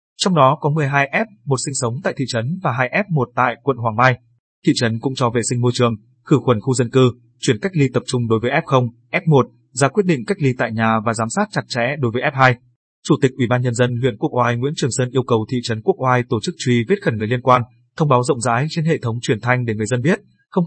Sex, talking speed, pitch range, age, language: male, 275 wpm, 120-155 Hz, 20-39, Vietnamese